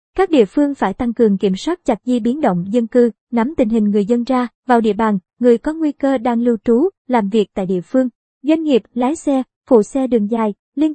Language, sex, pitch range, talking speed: Vietnamese, male, 220-265 Hz, 240 wpm